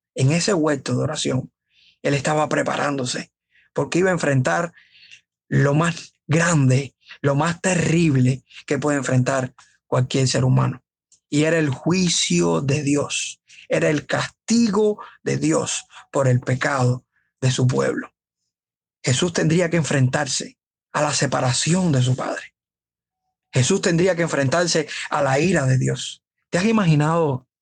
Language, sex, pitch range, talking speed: Spanish, male, 130-165 Hz, 135 wpm